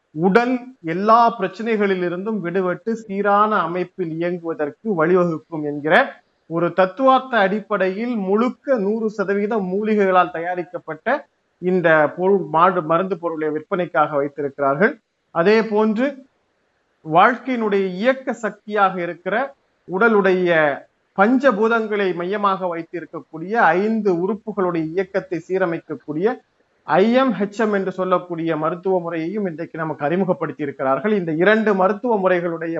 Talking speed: 95 wpm